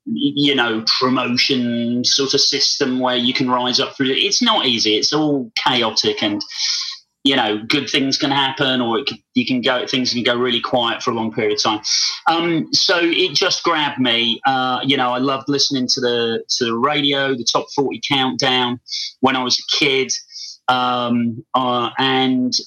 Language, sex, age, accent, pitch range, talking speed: English, male, 30-49, British, 125-150 Hz, 190 wpm